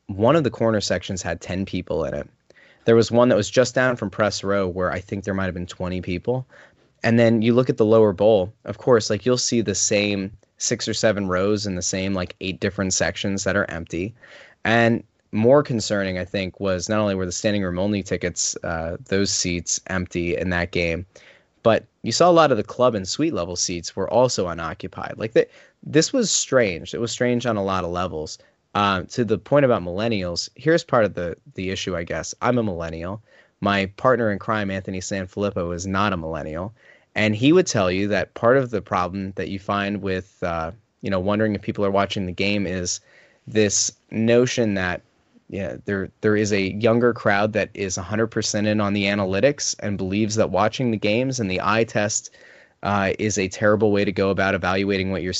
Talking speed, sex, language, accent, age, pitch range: 210 wpm, male, English, American, 20-39, 95-110 Hz